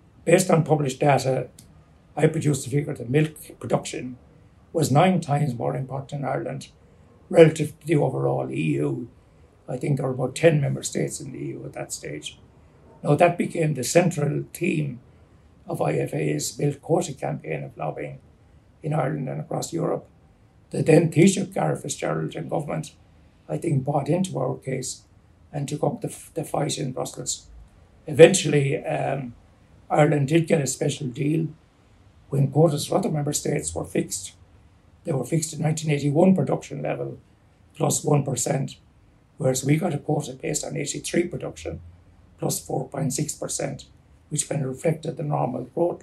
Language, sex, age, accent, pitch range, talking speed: English, male, 60-79, Finnish, 120-160 Hz, 155 wpm